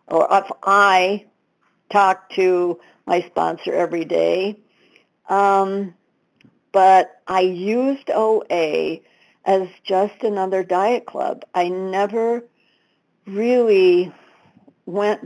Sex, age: female, 60-79